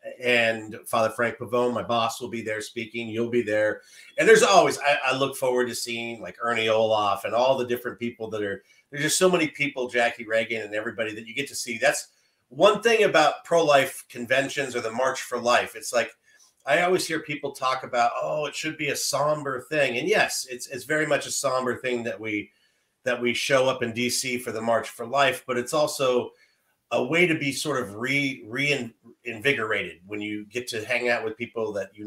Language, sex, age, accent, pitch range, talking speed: English, male, 40-59, American, 115-145 Hz, 220 wpm